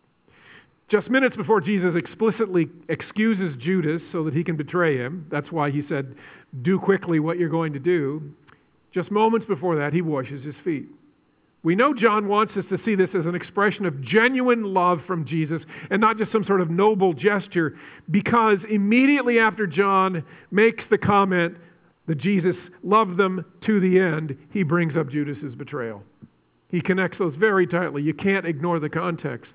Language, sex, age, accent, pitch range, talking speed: English, male, 50-69, American, 150-200 Hz, 175 wpm